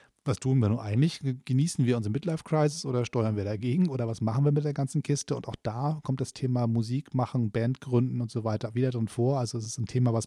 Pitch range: 115-130 Hz